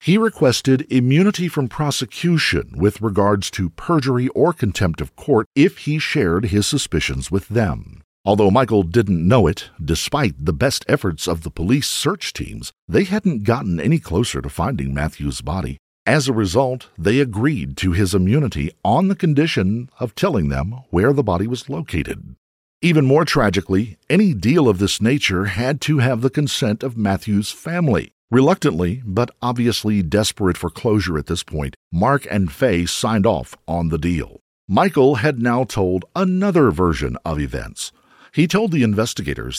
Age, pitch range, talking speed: 50-69, 90-140 Hz, 160 wpm